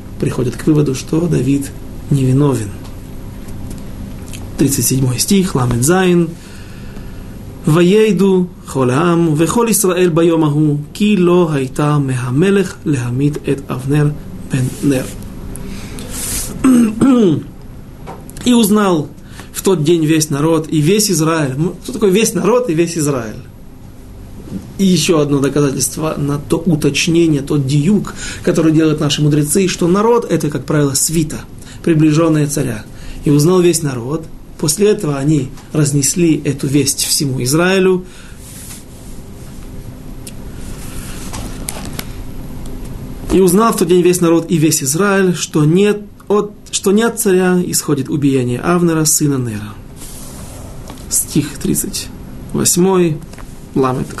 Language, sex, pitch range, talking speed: Russian, male, 135-180 Hz, 95 wpm